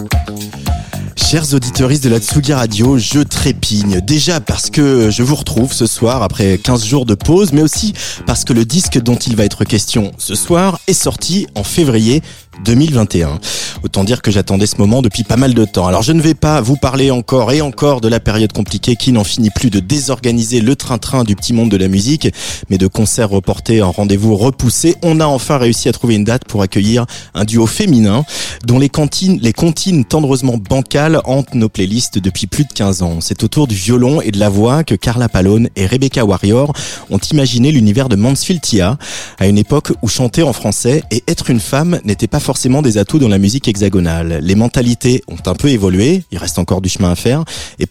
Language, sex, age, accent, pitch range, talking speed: French, male, 30-49, French, 105-140 Hz, 210 wpm